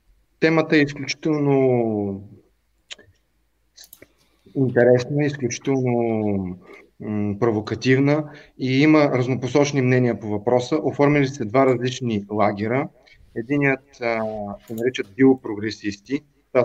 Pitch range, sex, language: 120-145 Hz, male, Bulgarian